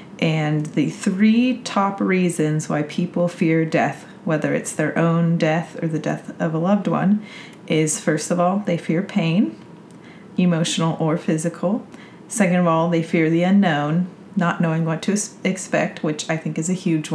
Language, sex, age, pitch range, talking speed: English, female, 30-49, 160-200 Hz, 170 wpm